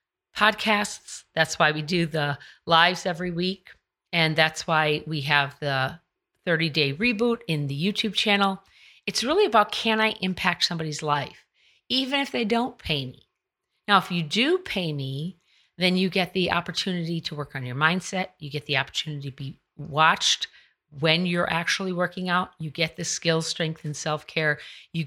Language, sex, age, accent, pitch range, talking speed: English, female, 40-59, American, 155-195 Hz, 175 wpm